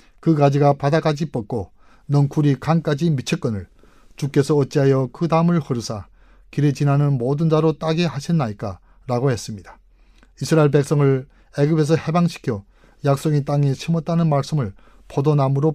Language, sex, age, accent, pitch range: Korean, male, 30-49, native, 125-155 Hz